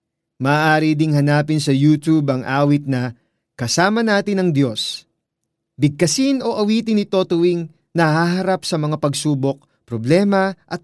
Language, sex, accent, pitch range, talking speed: Filipino, male, native, 130-170 Hz, 135 wpm